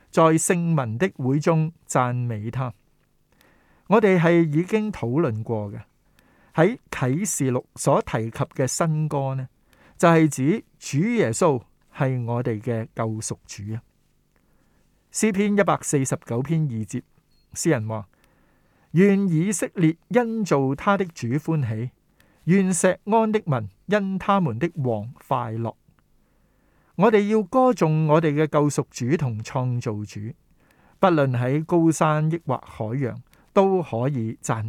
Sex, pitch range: male, 120-170 Hz